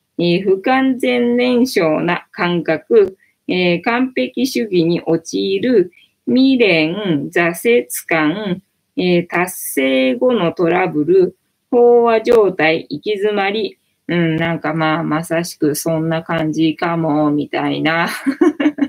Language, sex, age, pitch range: Japanese, female, 20-39, 160-245 Hz